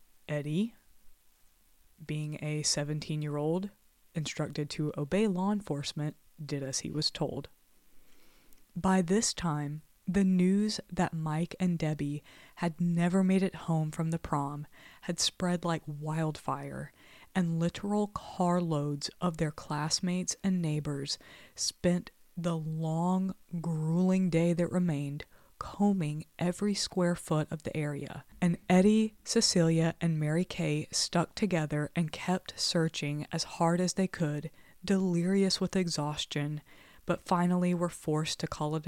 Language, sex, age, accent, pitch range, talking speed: English, female, 20-39, American, 150-180 Hz, 130 wpm